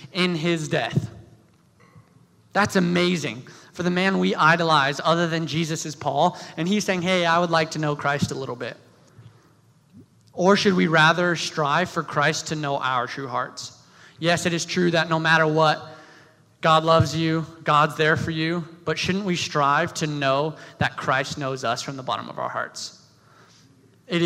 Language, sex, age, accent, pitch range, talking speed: English, male, 20-39, American, 145-170 Hz, 180 wpm